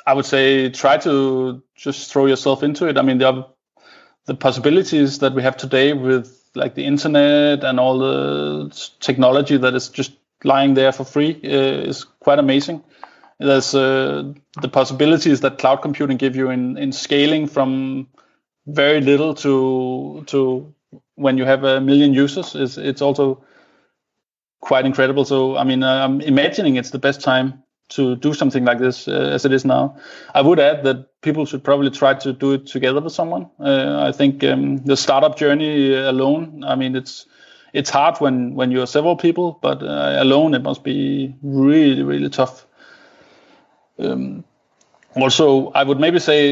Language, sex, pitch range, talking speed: French, male, 130-145 Hz, 170 wpm